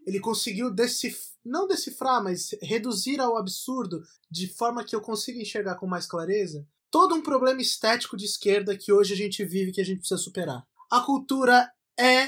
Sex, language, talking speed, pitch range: male, Portuguese, 190 wpm, 185-235 Hz